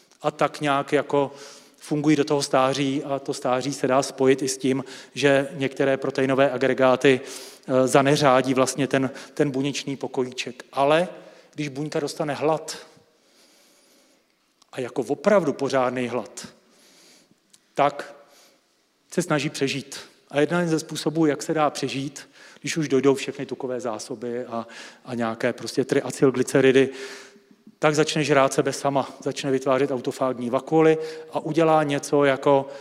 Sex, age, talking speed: male, 40-59, 135 wpm